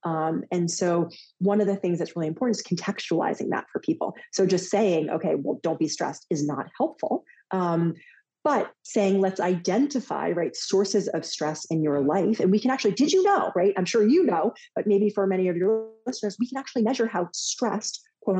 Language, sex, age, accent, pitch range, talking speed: English, female, 30-49, American, 170-225 Hz, 210 wpm